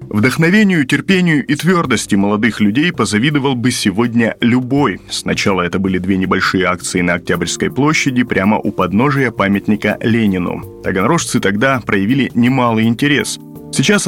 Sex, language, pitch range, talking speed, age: male, Russian, 105-145 Hz, 130 wpm, 30-49